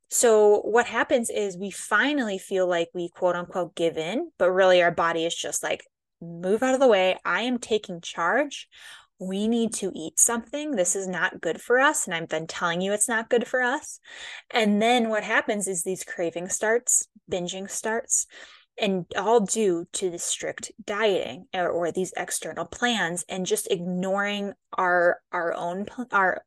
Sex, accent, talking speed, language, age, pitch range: female, American, 180 wpm, English, 20-39, 175-220 Hz